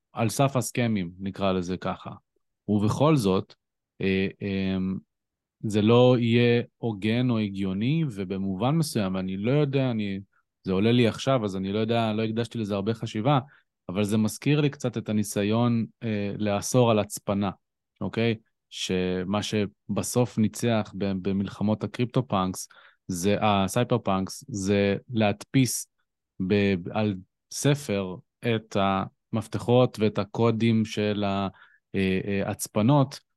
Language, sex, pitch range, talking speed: Hebrew, male, 95-120 Hz, 120 wpm